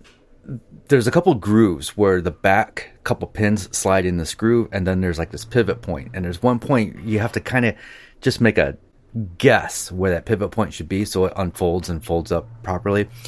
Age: 30-49